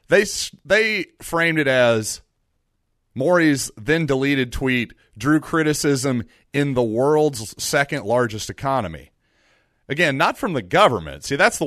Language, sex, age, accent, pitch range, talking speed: English, male, 40-59, American, 110-145 Hz, 120 wpm